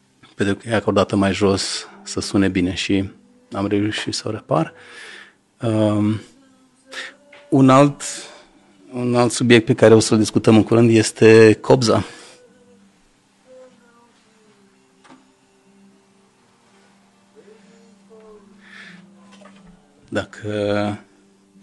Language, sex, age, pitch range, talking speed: Romanian, male, 40-59, 100-120 Hz, 85 wpm